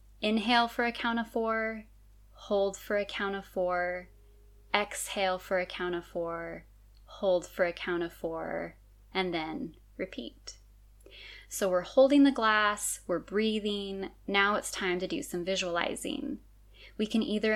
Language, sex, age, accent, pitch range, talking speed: English, female, 10-29, American, 180-215 Hz, 150 wpm